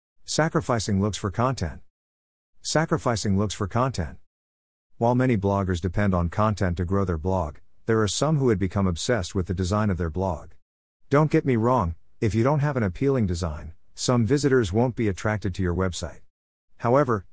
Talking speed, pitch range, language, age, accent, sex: 175 wpm, 85-115 Hz, English, 50-69, American, male